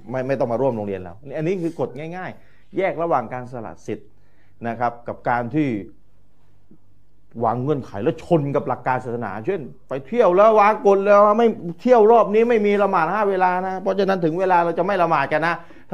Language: Thai